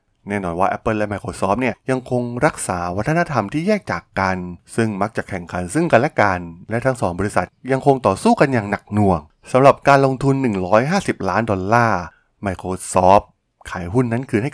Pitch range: 95-120 Hz